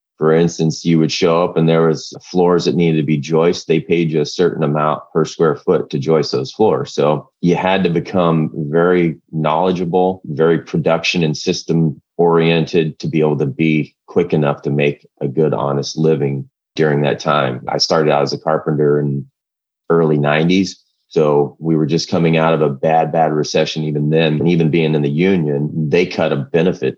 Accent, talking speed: American, 195 wpm